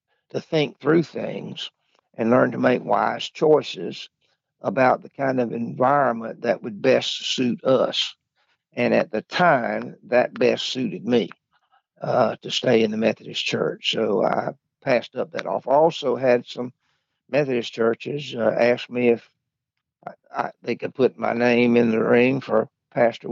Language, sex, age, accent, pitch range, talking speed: English, male, 60-79, American, 120-140 Hz, 155 wpm